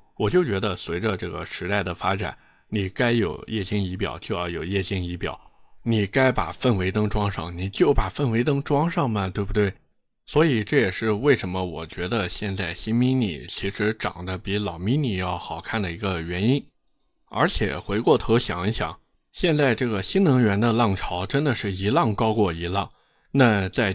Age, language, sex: 20-39, Chinese, male